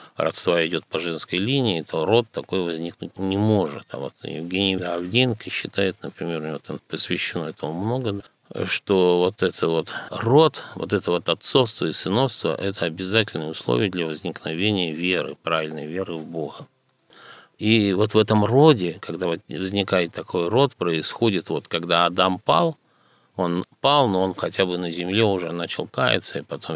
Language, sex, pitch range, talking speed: Russian, male, 85-105 Hz, 160 wpm